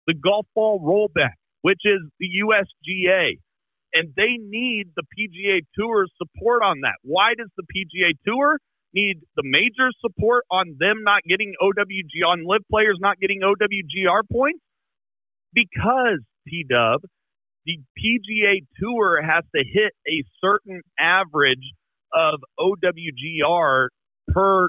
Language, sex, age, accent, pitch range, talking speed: English, male, 40-59, American, 170-220 Hz, 125 wpm